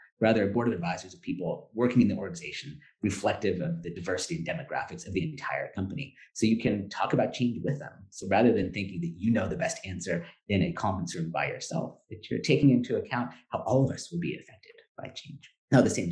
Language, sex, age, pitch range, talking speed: English, male, 40-59, 95-155 Hz, 235 wpm